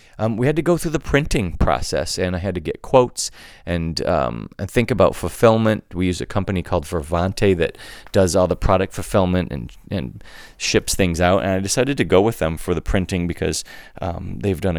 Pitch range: 80-100 Hz